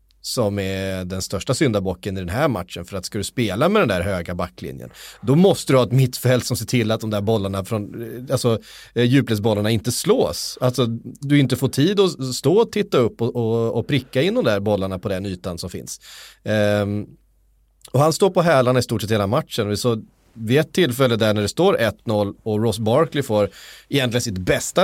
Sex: male